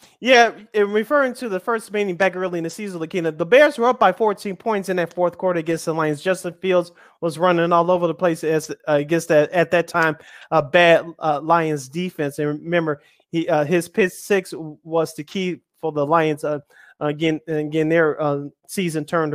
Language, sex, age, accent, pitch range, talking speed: English, male, 20-39, American, 155-185 Hz, 210 wpm